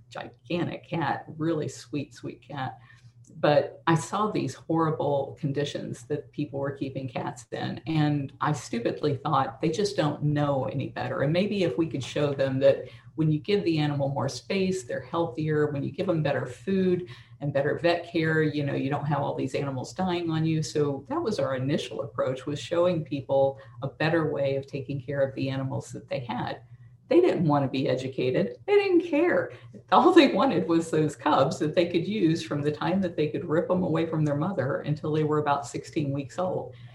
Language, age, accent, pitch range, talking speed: English, 50-69, American, 135-165 Hz, 200 wpm